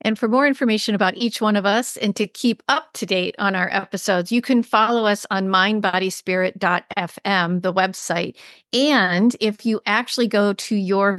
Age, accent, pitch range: 40-59, American, 185-225 Hz